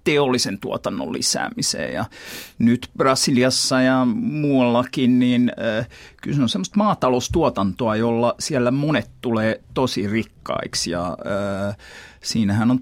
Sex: male